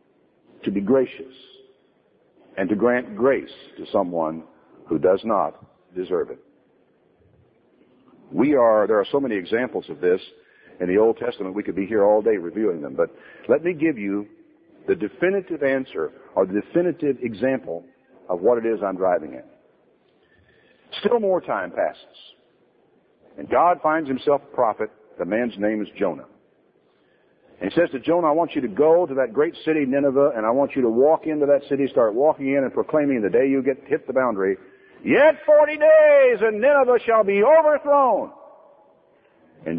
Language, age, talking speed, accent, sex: English, 60-79, 175 wpm, American, male